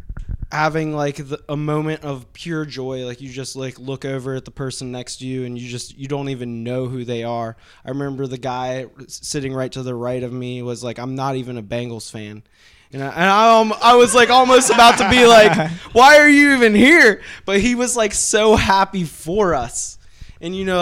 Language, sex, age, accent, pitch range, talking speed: English, male, 20-39, American, 125-155 Hz, 220 wpm